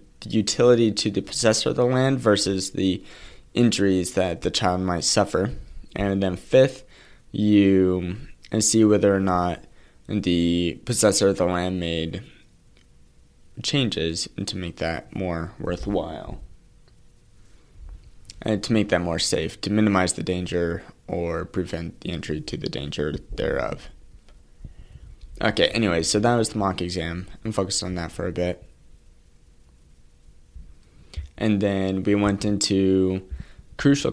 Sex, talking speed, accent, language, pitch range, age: male, 130 wpm, American, English, 80-105 Hz, 20-39